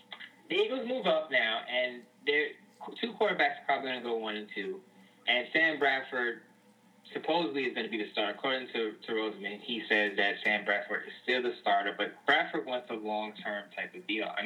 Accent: American